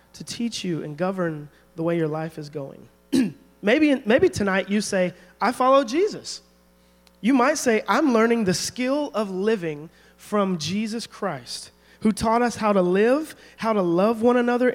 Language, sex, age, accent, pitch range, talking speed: English, male, 30-49, American, 135-215 Hz, 170 wpm